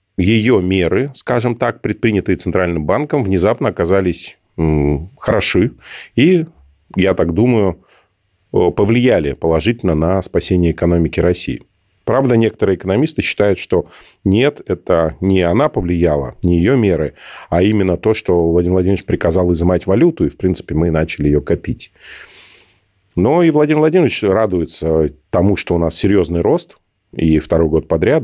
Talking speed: 135 wpm